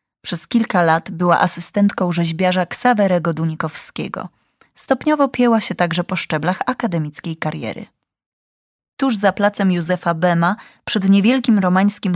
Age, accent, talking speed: 20-39, native, 120 wpm